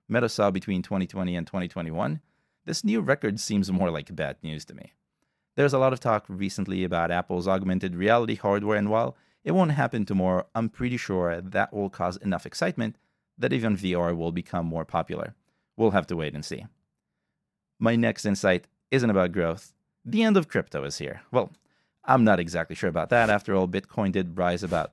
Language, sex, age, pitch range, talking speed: English, male, 30-49, 90-120 Hz, 190 wpm